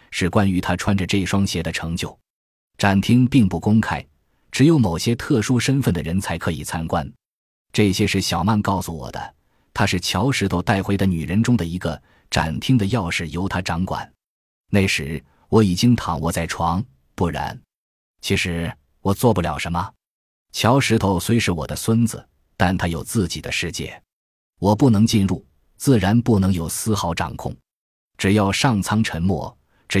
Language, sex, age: Chinese, male, 20-39